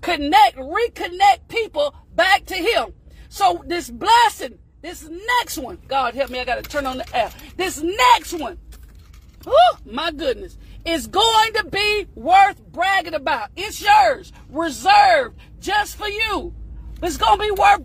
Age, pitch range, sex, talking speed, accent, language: 40-59, 305-405 Hz, female, 155 wpm, American, English